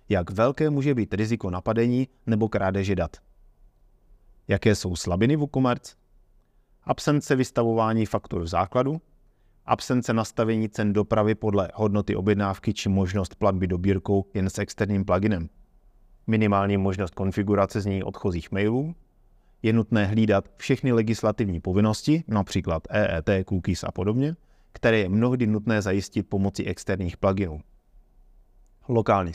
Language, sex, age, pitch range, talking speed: Czech, male, 30-49, 95-115 Hz, 125 wpm